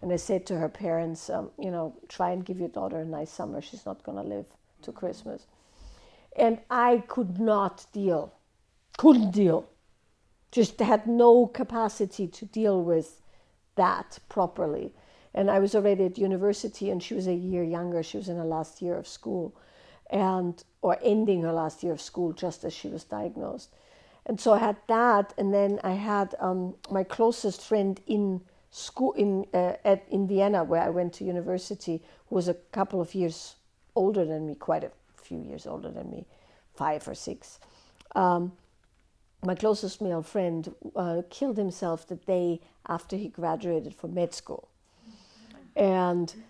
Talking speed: 170 wpm